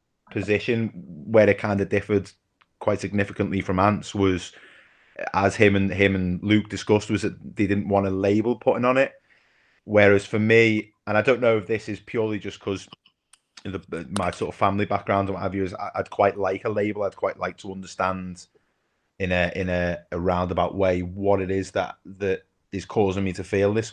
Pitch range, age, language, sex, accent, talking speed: 90-105 Hz, 30-49, English, male, British, 205 wpm